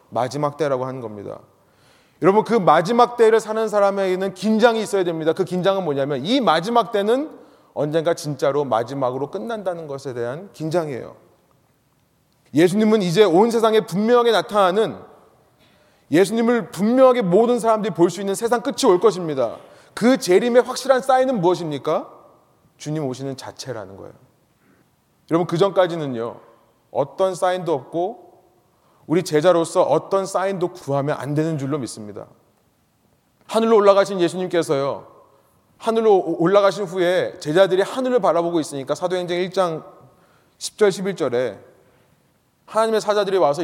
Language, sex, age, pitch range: Korean, male, 30-49, 155-215 Hz